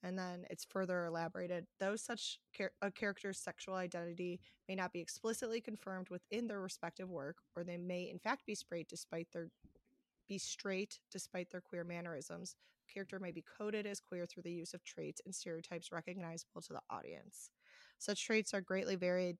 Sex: female